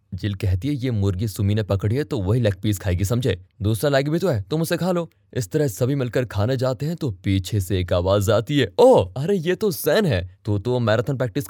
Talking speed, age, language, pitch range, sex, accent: 255 wpm, 20-39, Hindi, 105-155 Hz, male, native